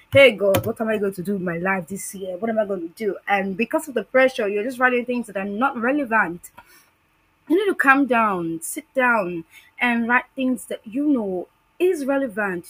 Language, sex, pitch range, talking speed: English, female, 200-275 Hz, 220 wpm